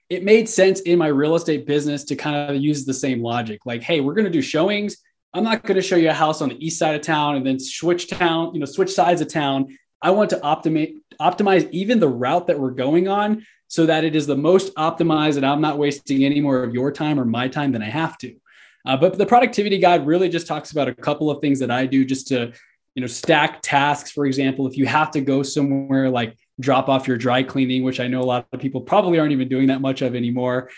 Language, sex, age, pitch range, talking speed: English, male, 20-39, 135-175 Hz, 255 wpm